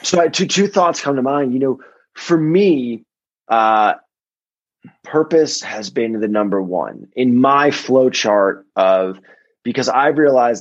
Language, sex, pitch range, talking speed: English, male, 105-140 Hz, 145 wpm